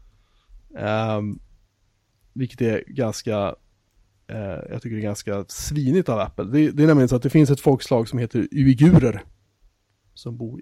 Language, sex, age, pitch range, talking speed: Swedish, male, 30-49, 105-140 Hz, 160 wpm